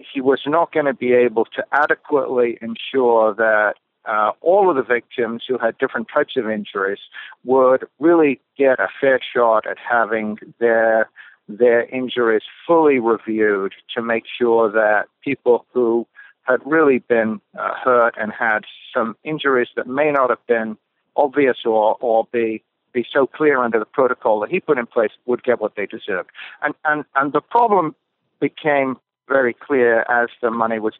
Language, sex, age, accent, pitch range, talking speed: English, male, 50-69, American, 115-145 Hz, 170 wpm